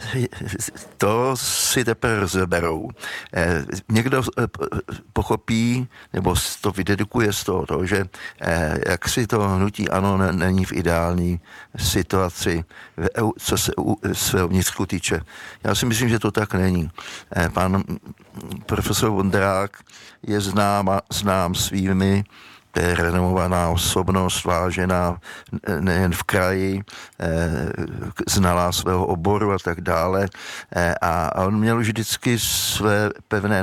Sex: male